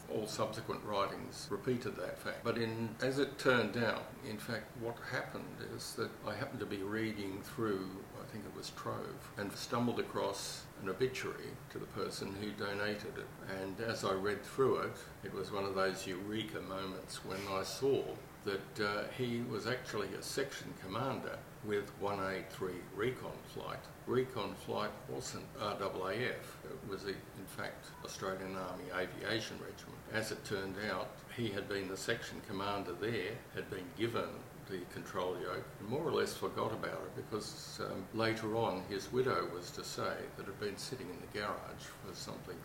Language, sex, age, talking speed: English, male, 60-79, 170 wpm